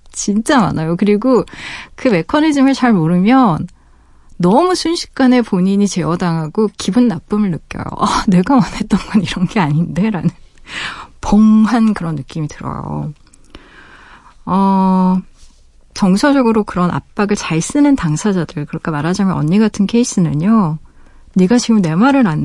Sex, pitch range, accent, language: female, 160-220 Hz, native, Korean